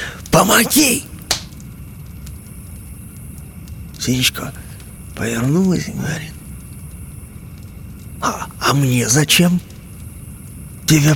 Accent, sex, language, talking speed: native, male, Russian, 55 wpm